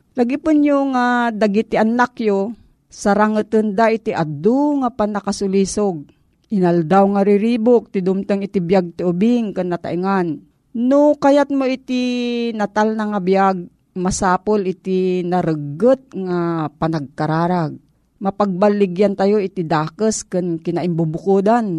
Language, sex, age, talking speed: Filipino, female, 40-59, 105 wpm